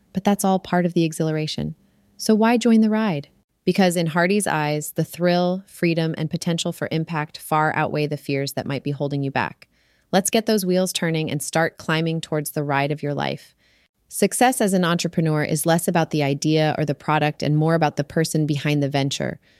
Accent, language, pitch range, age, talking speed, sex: American, English, 155-190 Hz, 30-49, 205 wpm, female